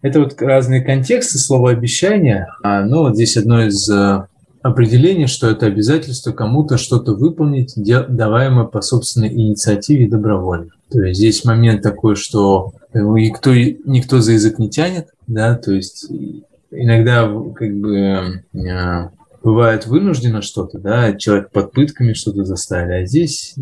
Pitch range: 100-130 Hz